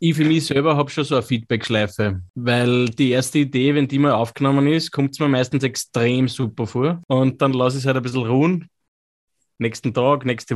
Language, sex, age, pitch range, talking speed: German, male, 20-39, 120-145 Hz, 210 wpm